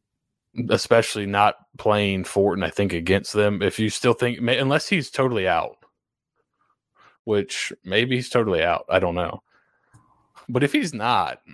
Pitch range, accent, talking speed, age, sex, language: 105-130 Hz, American, 145 wpm, 20-39, male, English